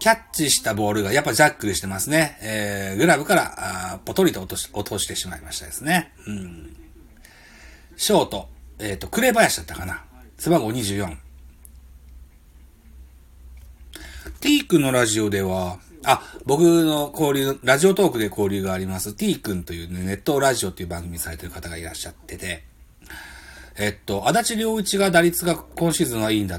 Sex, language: male, Japanese